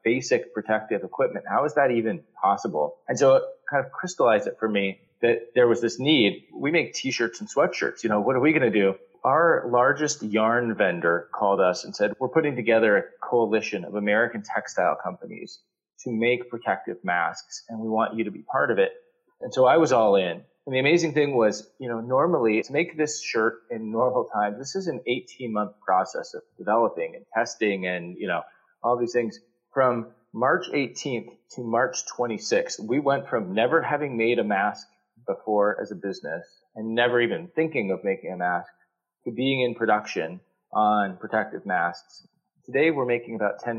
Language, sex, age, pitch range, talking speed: English, male, 30-49, 105-140 Hz, 190 wpm